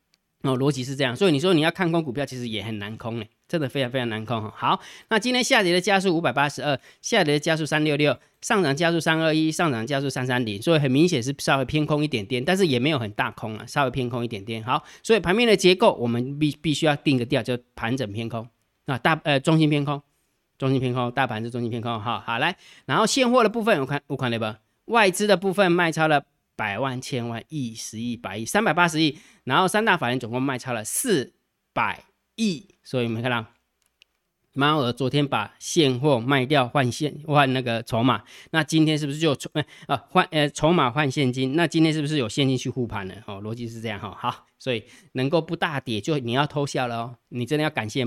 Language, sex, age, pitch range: Chinese, male, 20-39, 120-155 Hz